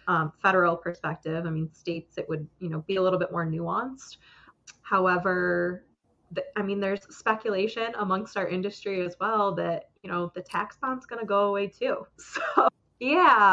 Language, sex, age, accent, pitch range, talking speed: English, female, 20-39, American, 170-205 Hz, 180 wpm